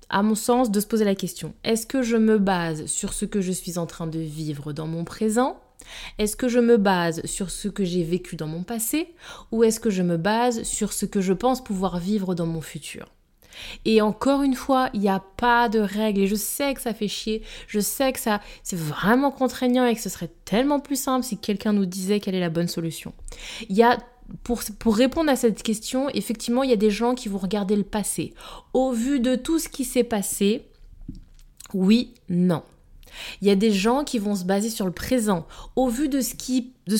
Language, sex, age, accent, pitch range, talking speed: French, female, 20-39, French, 185-240 Hz, 230 wpm